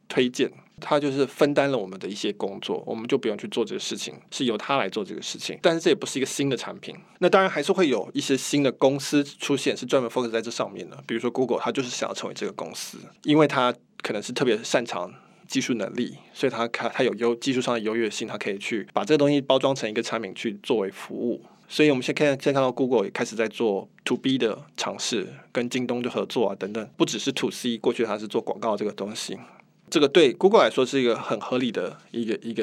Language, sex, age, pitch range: Chinese, male, 20-39, 120-150 Hz